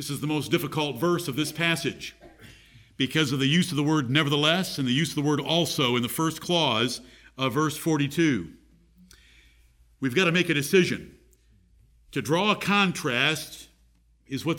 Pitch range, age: 115-175 Hz, 50-69